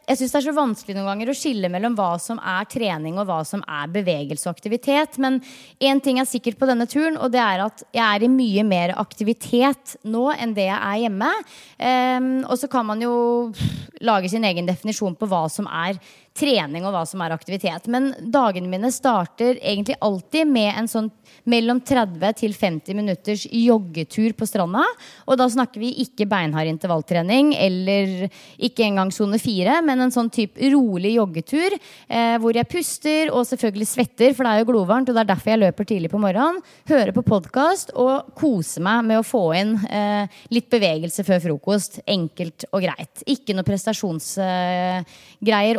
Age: 20-39